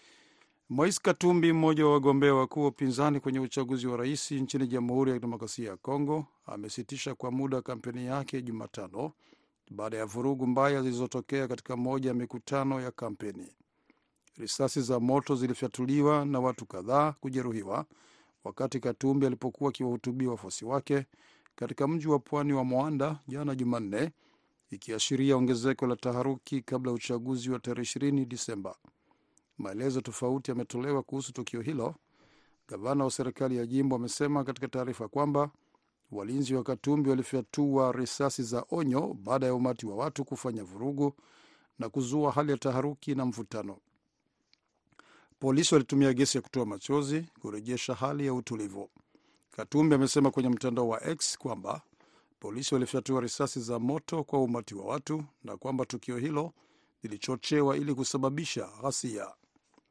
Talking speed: 135 wpm